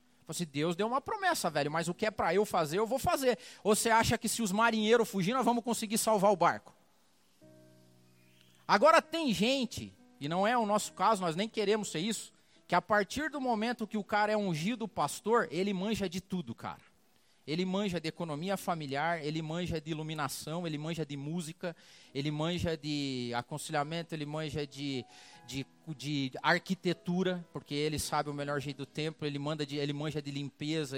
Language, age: Portuguese, 40-59